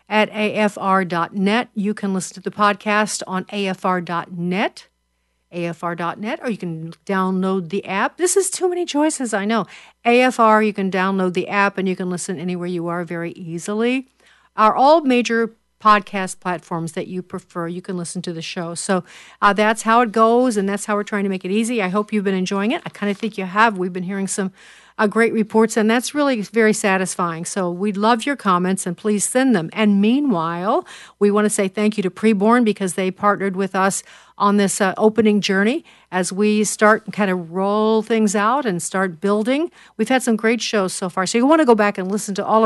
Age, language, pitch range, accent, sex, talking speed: 50-69, English, 185-225 Hz, American, female, 210 wpm